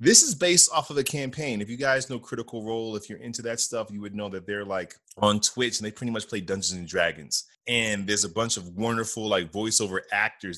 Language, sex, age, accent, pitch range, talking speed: English, male, 30-49, American, 95-130 Hz, 245 wpm